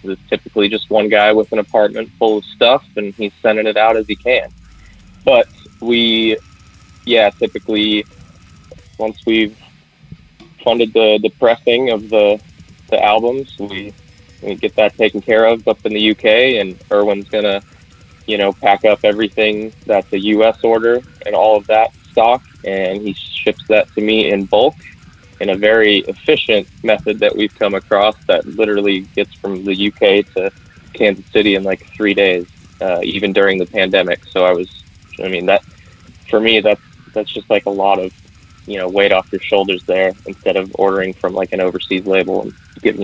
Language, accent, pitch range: English, American, 95-110 Hz